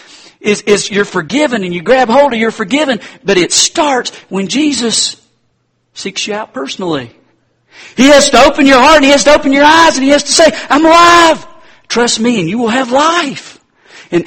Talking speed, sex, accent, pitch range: 200 wpm, male, American, 150-230 Hz